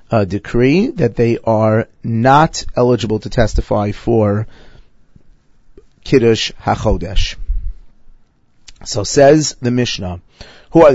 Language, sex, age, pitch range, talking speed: English, male, 40-59, 105-135 Hz, 100 wpm